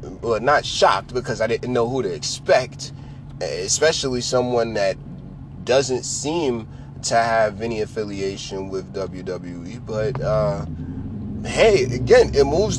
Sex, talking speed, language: male, 125 wpm, English